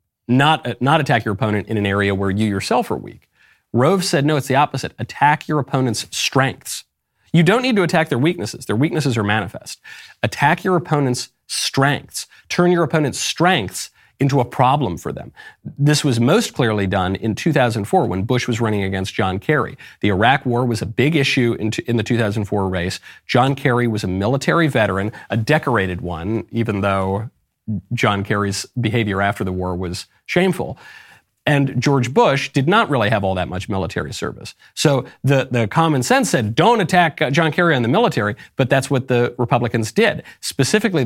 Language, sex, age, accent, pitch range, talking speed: English, male, 40-59, American, 105-145 Hz, 185 wpm